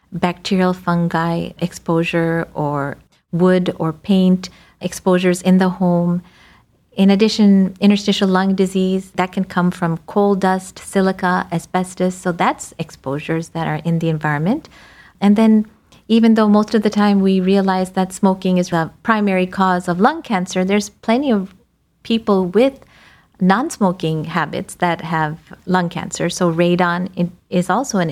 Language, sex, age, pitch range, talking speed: English, female, 50-69, 175-200 Hz, 145 wpm